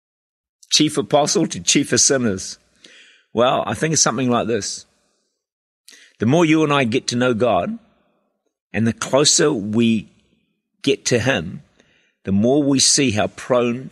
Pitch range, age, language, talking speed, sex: 105-140 Hz, 50-69, English, 150 wpm, male